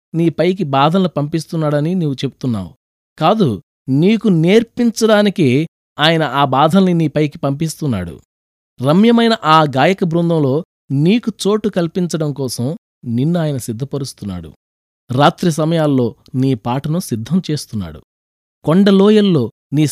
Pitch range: 125-185 Hz